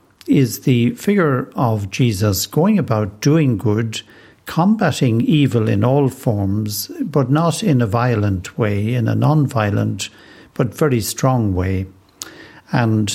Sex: male